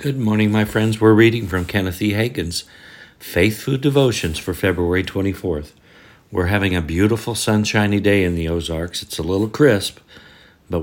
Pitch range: 80-105 Hz